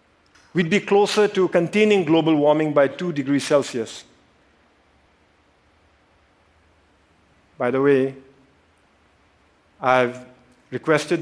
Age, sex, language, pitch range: 50-69, male, Korean, 125-175 Hz